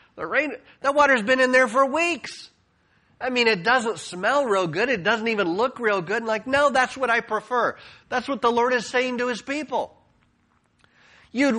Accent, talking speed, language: American, 200 wpm, English